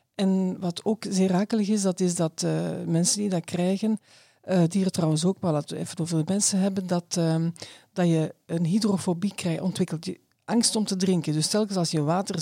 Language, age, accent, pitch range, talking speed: Dutch, 50-69, Dutch, 170-205 Hz, 205 wpm